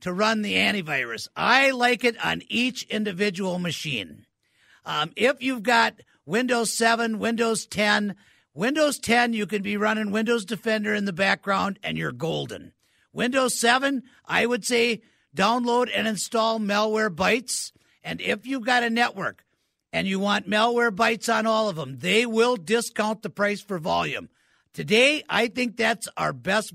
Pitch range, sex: 205-235 Hz, male